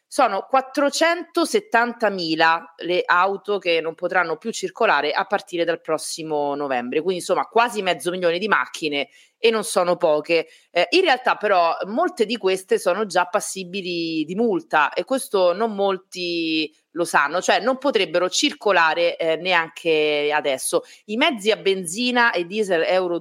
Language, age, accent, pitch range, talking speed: Italian, 30-49, native, 160-230 Hz, 145 wpm